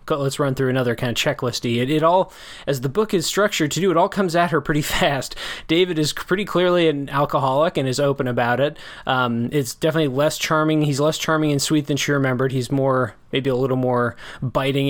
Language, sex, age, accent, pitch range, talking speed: English, male, 20-39, American, 130-155 Hz, 230 wpm